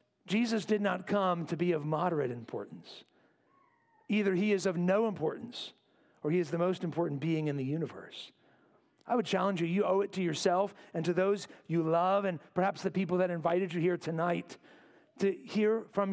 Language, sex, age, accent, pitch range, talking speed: English, male, 40-59, American, 180-225 Hz, 190 wpm